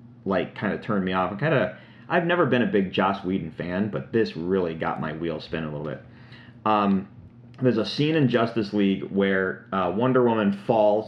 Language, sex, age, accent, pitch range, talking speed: English, male, 30-49, American, 100-120 Hz, 210 wpm